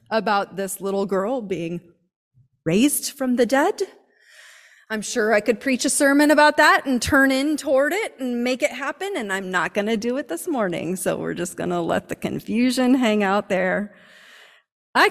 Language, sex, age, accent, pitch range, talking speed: English, female, 30-49, American, 195-270 Hz, 185 wpm